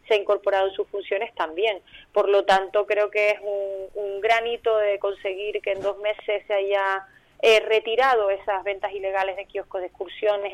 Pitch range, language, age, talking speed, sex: 200-225 Hz, Spanish, 20-39, 190 wpm, female